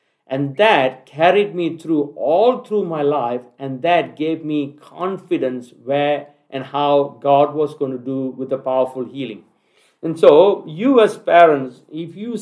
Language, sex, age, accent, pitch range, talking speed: English, male, 50-69, Indian, 140-180 Hz, 160 wpm